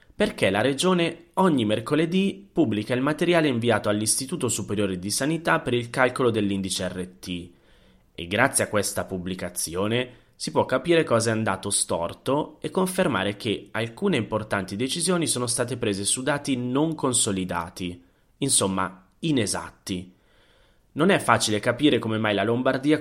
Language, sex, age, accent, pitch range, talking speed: Italian, male, 30-49, native, 100-140 Hz, 140 wpm